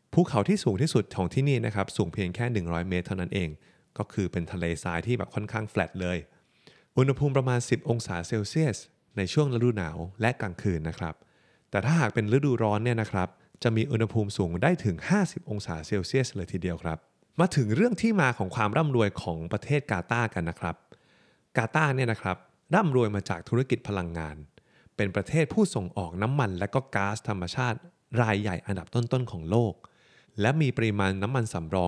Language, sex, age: Thai, male, 20-39